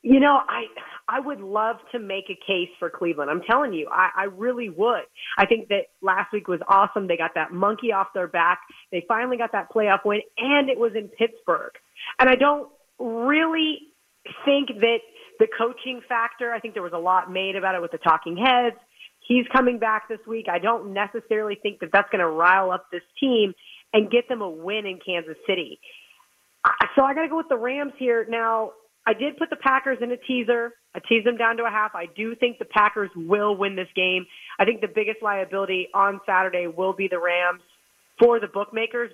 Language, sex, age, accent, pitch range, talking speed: English, female, 30-49, American, 190-240 Hz, 215 wpm